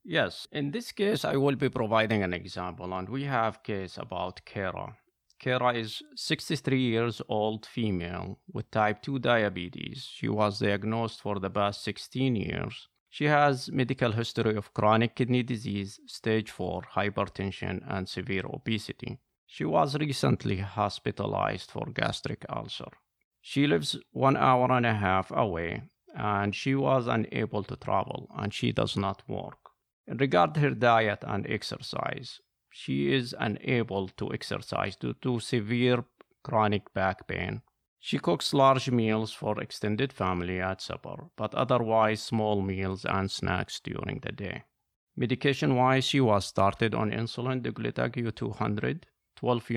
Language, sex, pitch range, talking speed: English, male, 100-135 Hz, 140 wpm